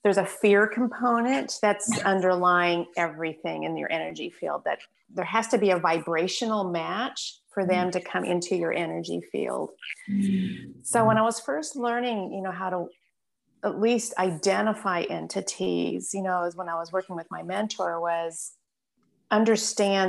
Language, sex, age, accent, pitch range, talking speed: English, female, 30-49, American, 170-205 Hz, 160 wpm